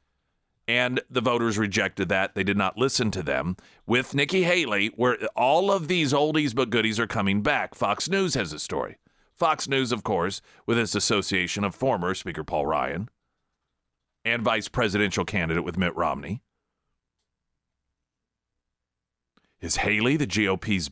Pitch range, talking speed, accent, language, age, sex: 95-135 Hz, 150 wpm, American, English, 40-59, male